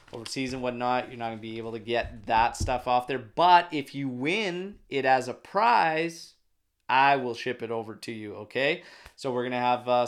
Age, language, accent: 20-39, English, American